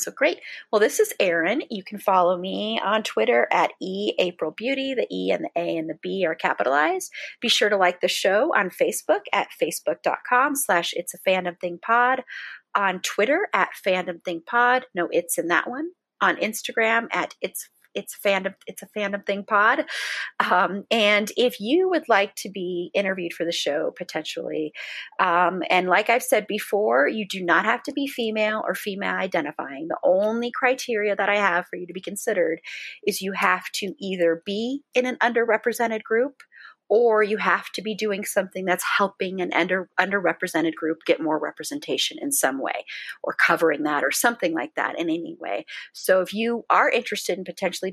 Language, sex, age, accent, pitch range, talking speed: English, female, 30-49, American, 180-240 Hz, 190 wpm